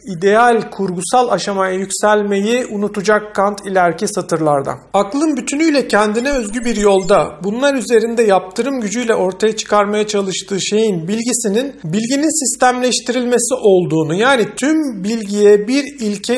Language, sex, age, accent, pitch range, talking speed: Turkish, male, 50-69, native, 200-235 Hz, 115 wpm